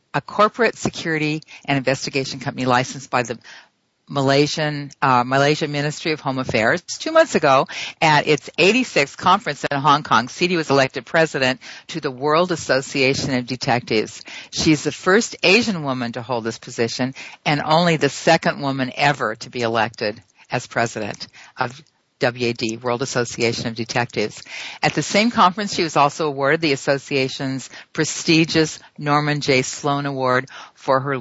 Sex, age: female, 50-69